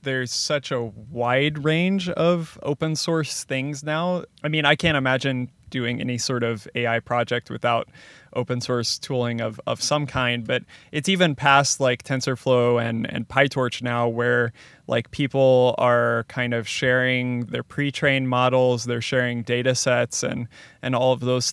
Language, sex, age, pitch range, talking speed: English, male, 20-39, 125-145 Hz, 160 wpm